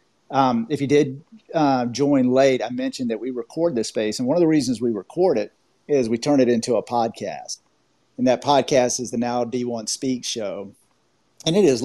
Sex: male